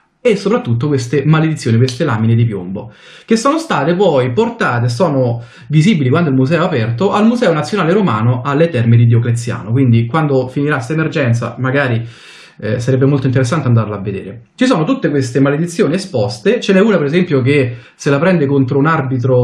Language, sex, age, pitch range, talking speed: Italian, male, 30-49, 120-165 Hz, 180 wpm